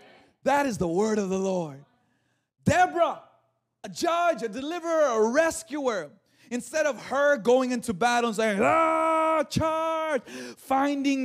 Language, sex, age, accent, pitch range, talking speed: English, male, 30-49, American, 175-280 Hz, 135 wpm